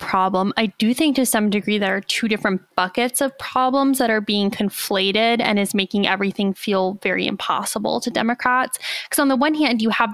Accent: American